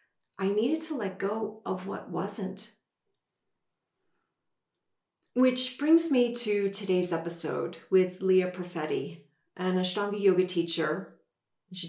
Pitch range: 180-225 Hz